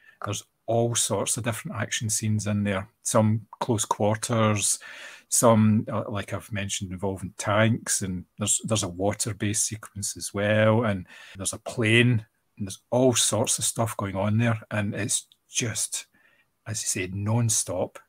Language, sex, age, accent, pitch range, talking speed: English, male, 40-59, British, 105-115 Hz, 155 wpm